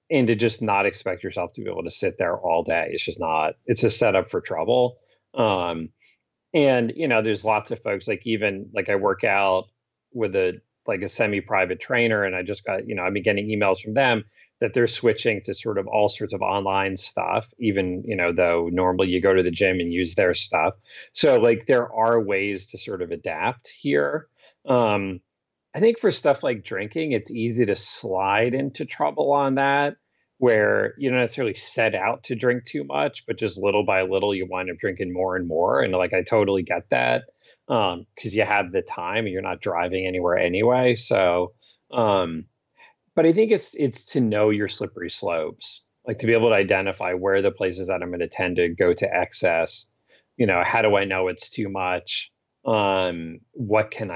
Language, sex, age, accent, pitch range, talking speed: English, male, 30-49, American, 90-115 Hz, 205 wpm